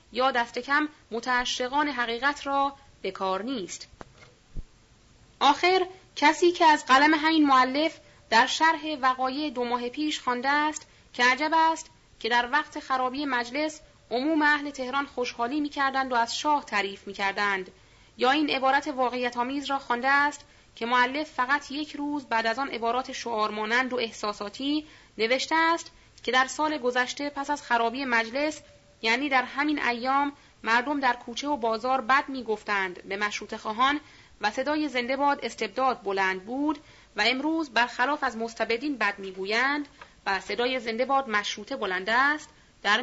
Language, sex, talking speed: Persian, female, 145 wpm